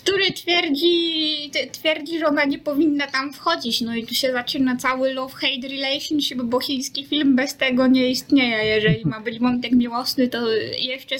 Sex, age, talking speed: female, 20-39, 165 wpm